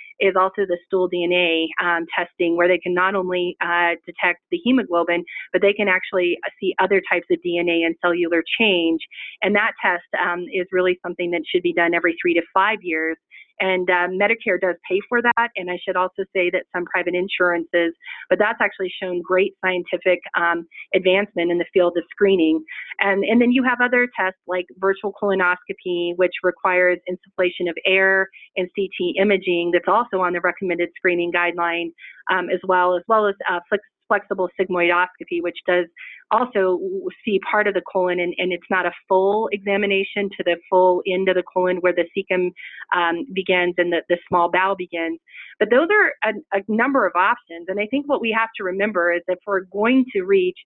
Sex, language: female, English